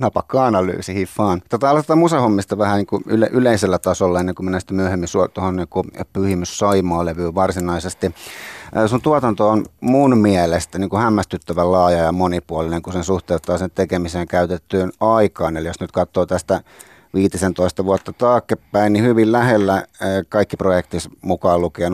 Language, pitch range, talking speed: Finnish, 90-110 Hz, 145 wpm